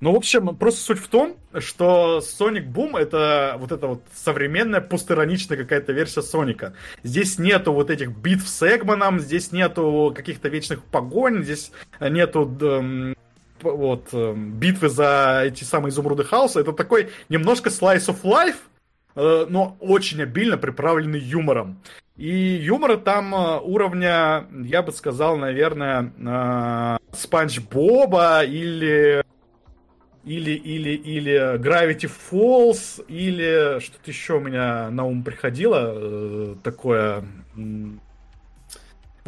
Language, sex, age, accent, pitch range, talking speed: Russian, male, 20-39, native, 135-185 Hz, 120 wpm